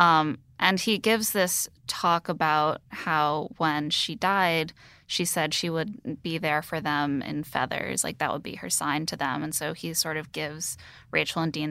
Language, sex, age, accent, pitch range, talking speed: English, female, 10-29, American, 150-175 Hz, 195 wpm